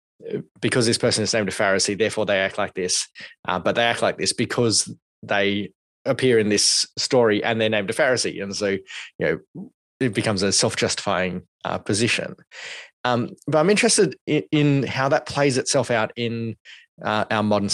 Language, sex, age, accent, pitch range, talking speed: English, male, 20-39, Australian, 105-125 Hz, 185 wpm